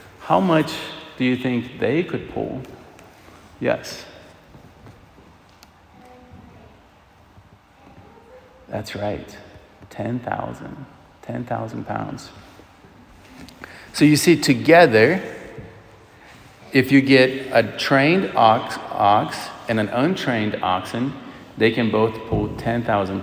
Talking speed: 90 wpm